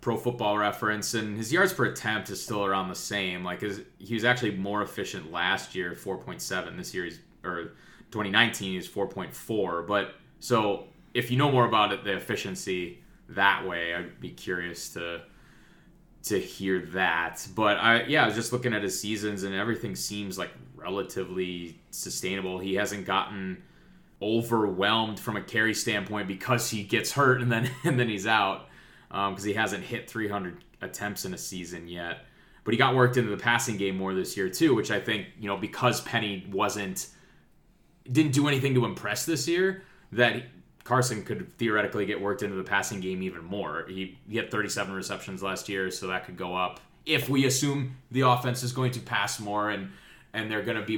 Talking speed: 190 wpm